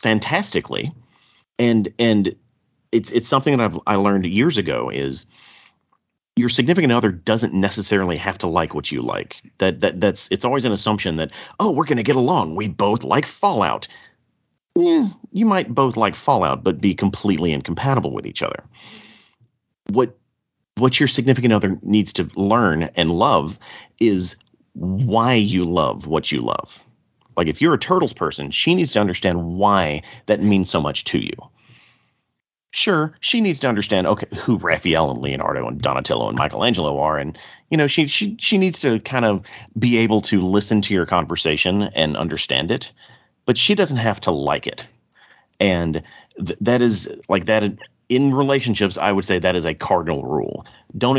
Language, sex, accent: English, male, American